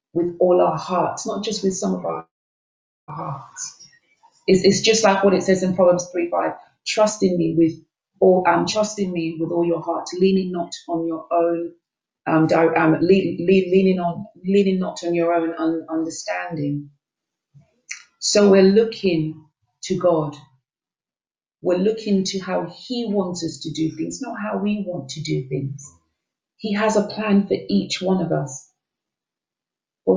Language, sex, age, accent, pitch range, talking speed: English, female, 40-59, British, 160-200 Hz, 165 wpm